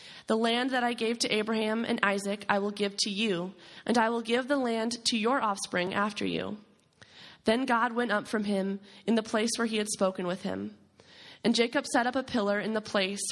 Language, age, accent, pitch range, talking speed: English, 20-39, American, 195-235 Hz, 220 wpm